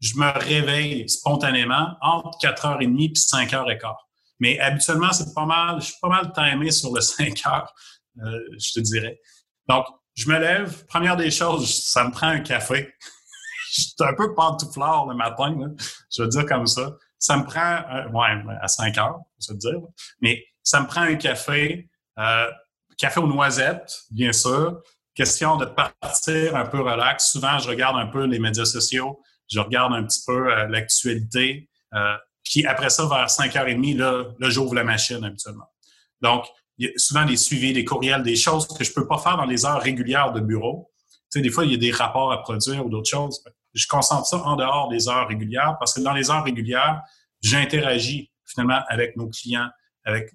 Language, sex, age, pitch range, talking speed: English, male, 30-49, 120-150 Hz, 195 wpm